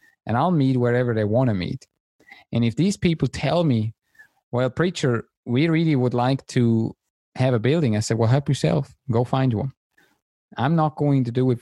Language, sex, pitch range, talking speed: English, male, 110-130 Hz, 195 wpm